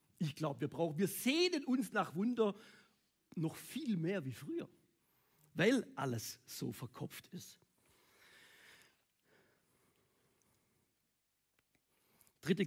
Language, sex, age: German, male, 50-69